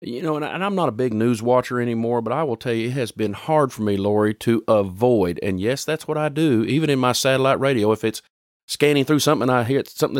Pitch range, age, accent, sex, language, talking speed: 110-140 Hz, 50-69, American, male, English, 255 wpm